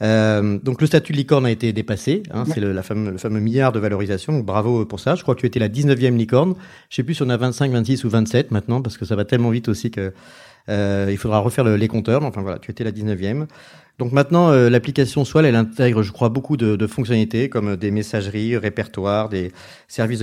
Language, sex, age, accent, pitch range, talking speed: French, male, 40-59, French, 105-130 Hz, 245 wpm